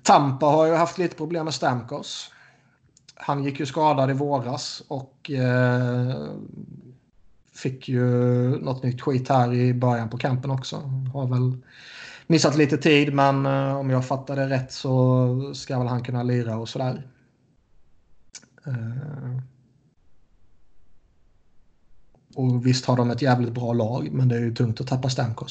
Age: 30-49